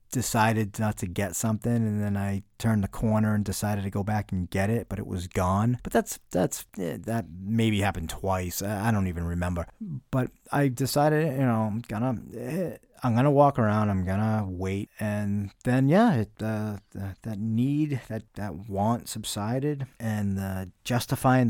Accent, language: American, English